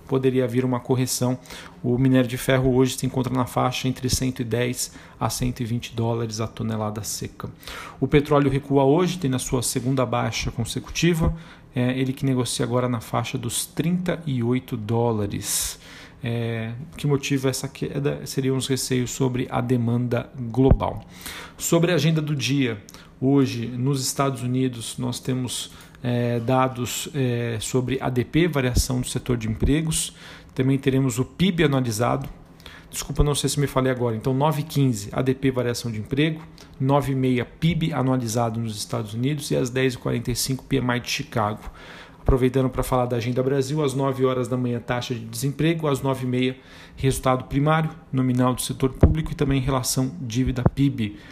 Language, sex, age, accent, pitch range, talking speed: Portuguese, male, 40-59, Brazilian, 120-135 Hz, 155 wpm